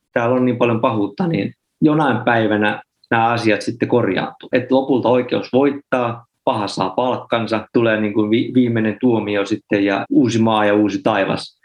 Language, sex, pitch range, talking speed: Finnish, male, 105-125 Hz, 155 wpm